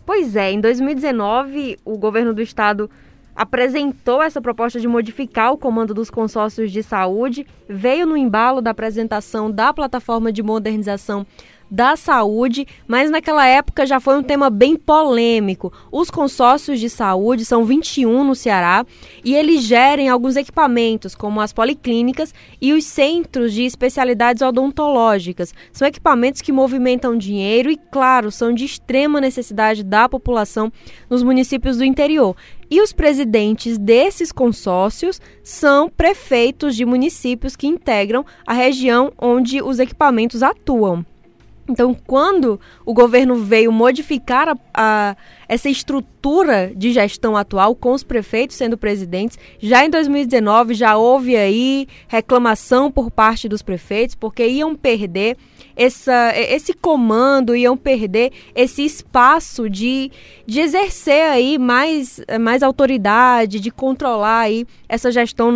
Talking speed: 135 wpm